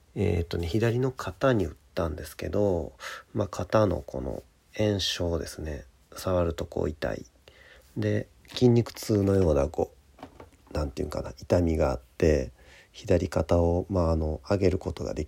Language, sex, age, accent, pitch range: Japanese, male, 40-59, native, 75-100 Hz